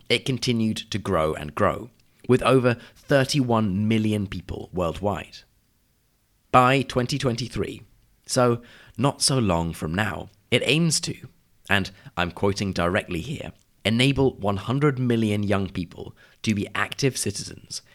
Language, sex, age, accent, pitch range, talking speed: English, male, 30-49, British, 95-120 Hz, 125 wpm